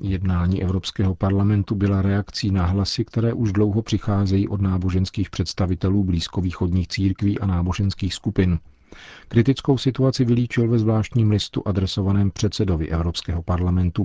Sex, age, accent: male, 50-69, native